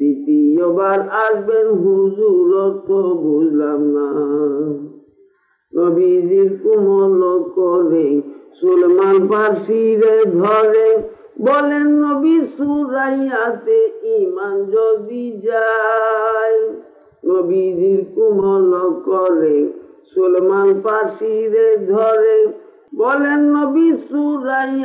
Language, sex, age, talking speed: Bengali, male, 50-69, 50 wpm